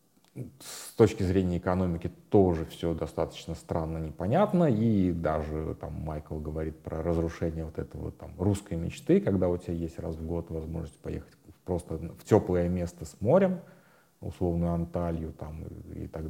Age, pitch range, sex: 30-49, 85-100 Hz, male